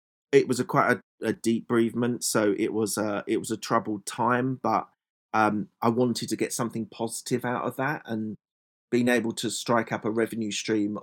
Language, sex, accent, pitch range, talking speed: English, male, British, 105-120 Hz, 200 wpm